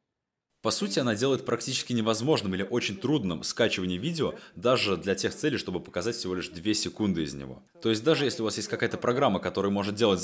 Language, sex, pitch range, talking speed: Russian, male, 95-130 Hz, 205 wpm